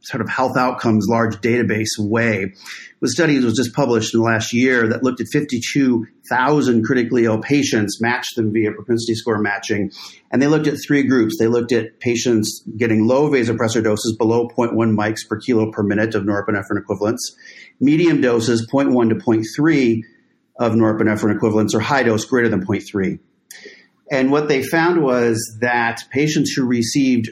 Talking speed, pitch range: 165 wpm, 110-125 Hz